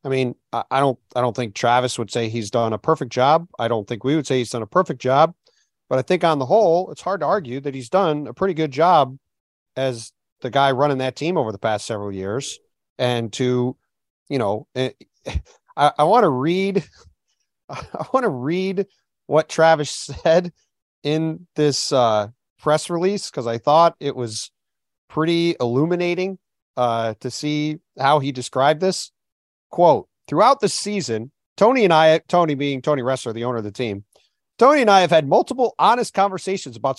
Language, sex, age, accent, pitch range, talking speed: English, male, 40-59, American, 130-180 Hz, 185 wpm